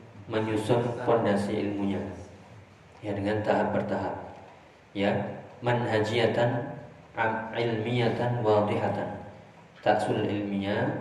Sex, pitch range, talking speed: male, 100-115 Hz, 70 wpm